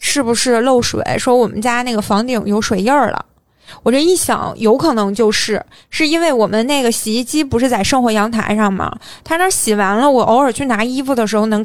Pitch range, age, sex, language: 215-255 Hz, 20-39, female, Chinese